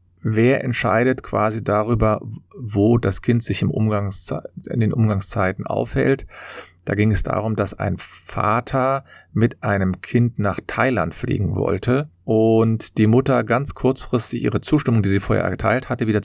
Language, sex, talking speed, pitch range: German, male, 150 wpm, 95-120 Hz